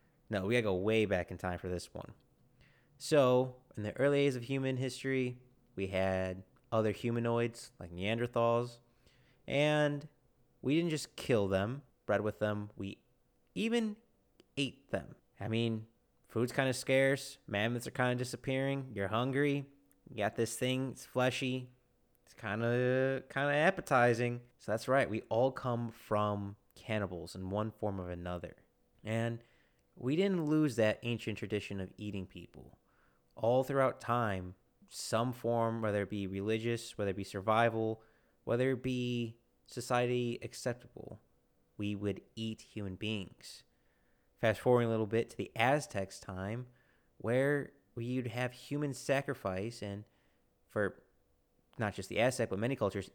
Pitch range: 100-125 Hz